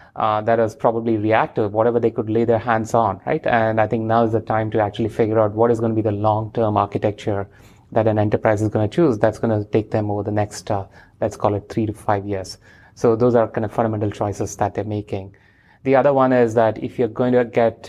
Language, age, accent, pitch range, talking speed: English, 30-49, Indian, 105-120 Hz, 250 wpm